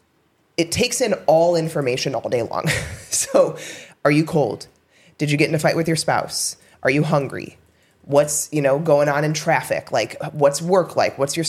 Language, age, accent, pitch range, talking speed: English, 20-39, American, 145-180 Hz, 195 wpm